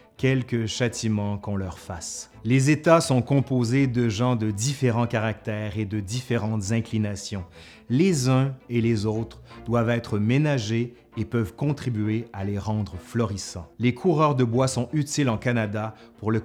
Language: French